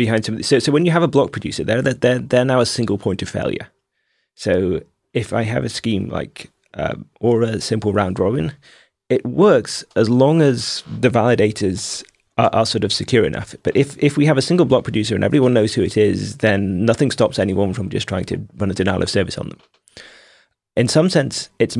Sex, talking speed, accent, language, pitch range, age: male, 215 wpm, British, English, 100-125 Hz, 30-49